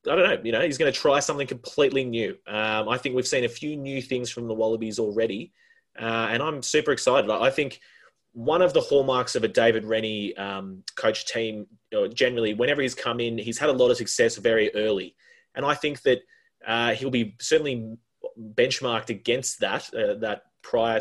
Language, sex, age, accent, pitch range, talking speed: English, male, 20-39, Australian, 115-180 Hz, 205 wpm